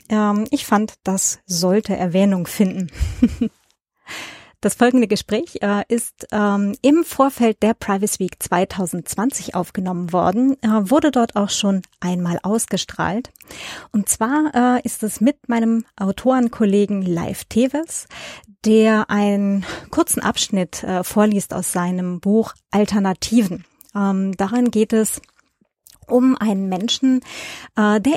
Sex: female